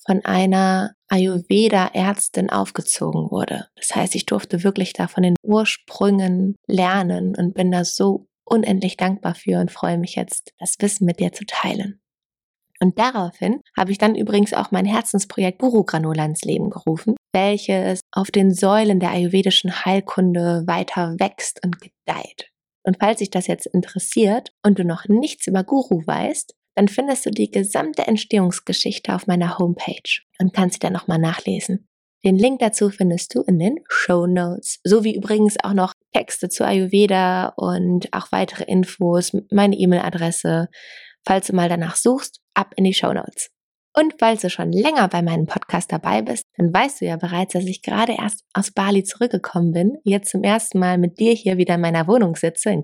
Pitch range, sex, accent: 180-210 Hz, female, German